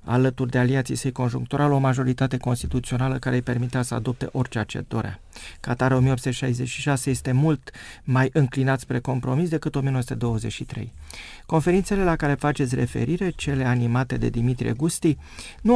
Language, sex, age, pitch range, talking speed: Romanian, male, 30-49, 125-155 Hz, 140 wpm